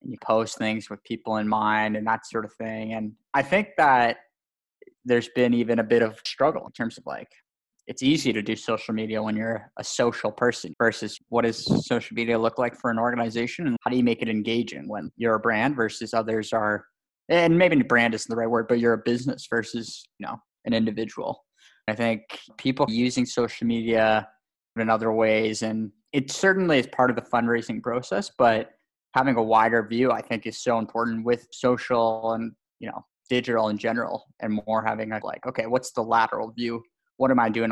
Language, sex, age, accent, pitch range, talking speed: English, male, 20-39, American, 110-120 Hz, 205 wpm